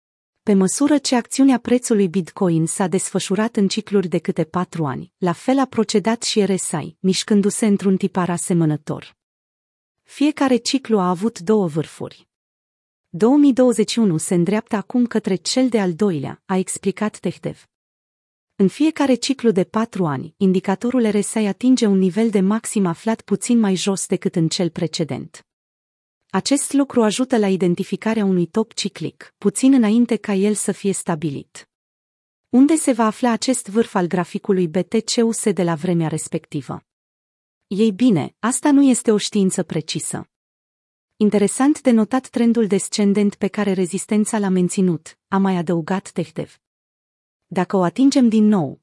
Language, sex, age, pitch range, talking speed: Romanian, female, 30-49, 180-225 Hz, 145 wpm